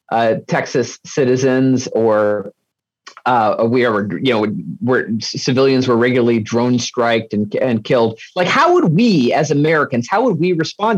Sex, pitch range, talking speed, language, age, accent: male, 125-180 Hz, 155 wpm, English, 40-59, American